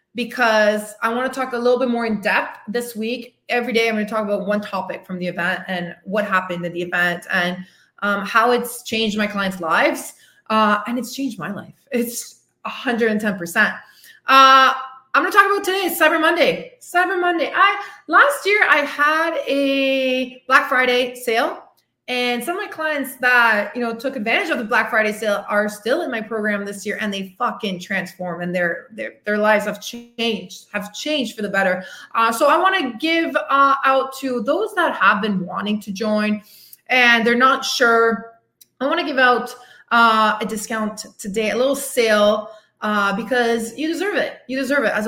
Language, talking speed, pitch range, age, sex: English, 195 wpm, 210-270 Hz, 20-39, female